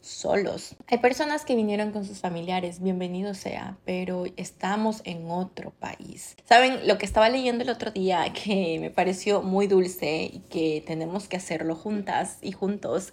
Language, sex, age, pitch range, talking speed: Spanish, female, 20-39, 175-210 Hz, 165 wpm